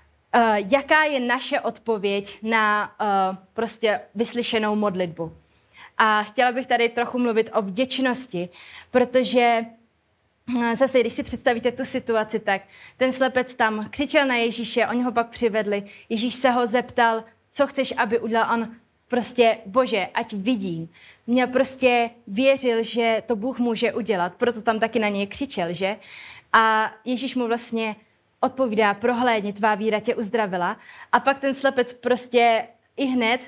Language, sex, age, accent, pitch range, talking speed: Czech, female, 20-39, native, 220-250 Hz, 140 wpm